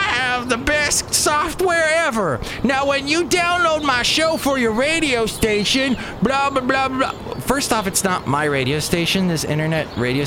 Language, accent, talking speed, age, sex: English, American, 165 wpm, 30-49, male